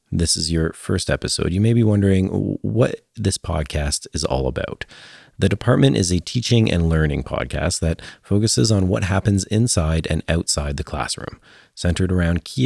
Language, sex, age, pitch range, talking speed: English, male, 40-59, 80-110 Hz, 170 wpm